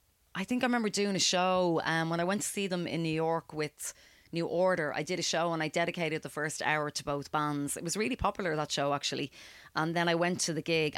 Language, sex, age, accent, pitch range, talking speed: English, female, 30-49, Irish, 150-180 Hz, 255 wpm